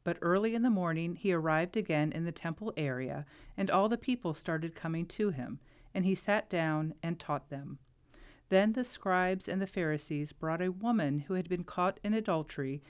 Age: 40-59